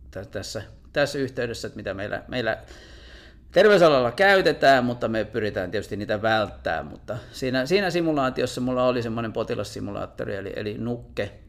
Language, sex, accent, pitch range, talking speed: Finnish, male, native, 95-120 Hz, 135 wpm